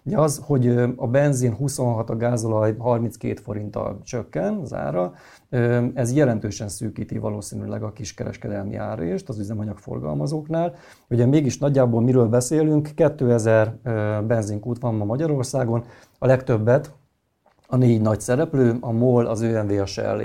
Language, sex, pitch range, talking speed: Hungarian, male, 110-130 Hz, 120 wpm